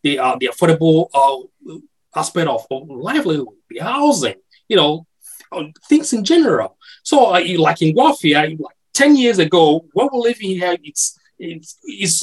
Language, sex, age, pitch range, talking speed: English, male, 30-49, 165-260 Hz, 150 wpm